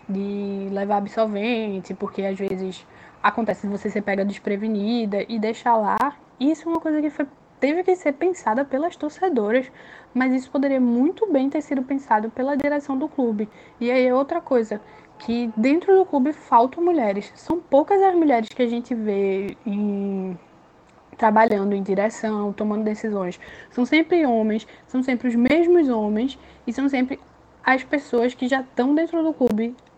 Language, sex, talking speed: Portuguese, female, 165 wpm